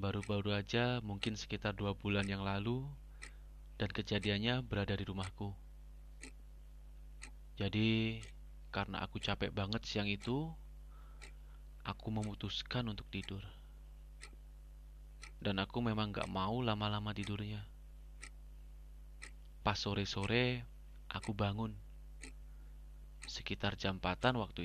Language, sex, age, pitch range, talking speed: Indonesian, male, 30-49, 75-105 Hz, 95 wpm